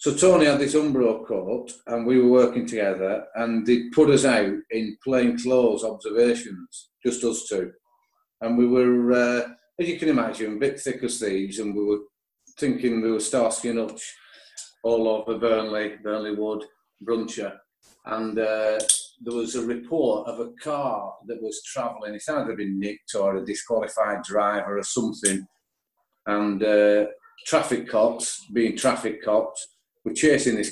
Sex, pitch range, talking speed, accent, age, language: male, 110-130 Hz, 160 wpm, British, 40-59, English